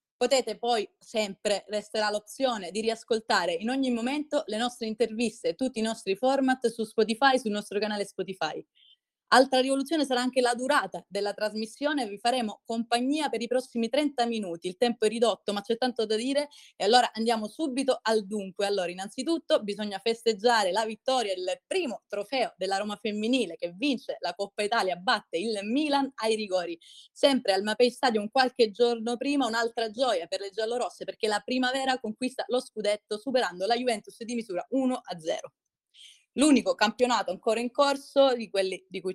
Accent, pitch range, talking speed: native, 205-255 Hz, 165 wpm